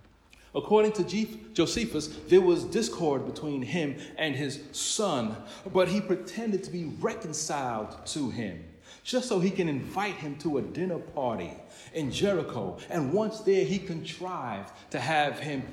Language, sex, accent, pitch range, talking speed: English, male, American, 135-195 Hz, 150 wpm